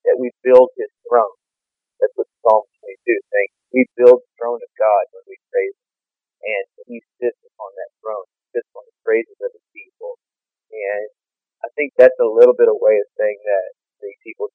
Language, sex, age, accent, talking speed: English, male, 40-59, American, 200 wpm